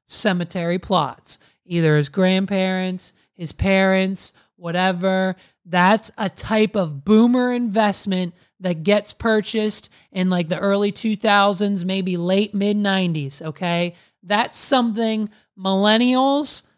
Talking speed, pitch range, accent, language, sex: 105 wpm, 185-235 Hz, American, English, male